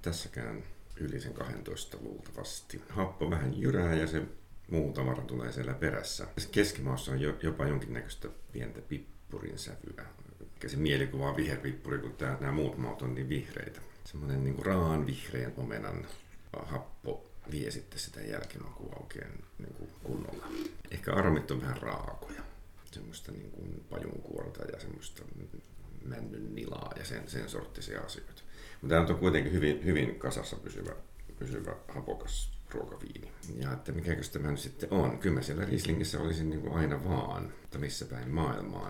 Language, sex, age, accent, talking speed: Finnish, male, 50-69, native, 140 wpm